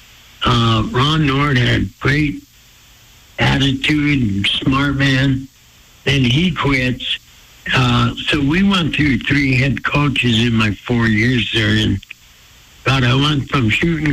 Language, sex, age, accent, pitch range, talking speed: English, male, 60-79, American, 110-135 Hz, 125 wpm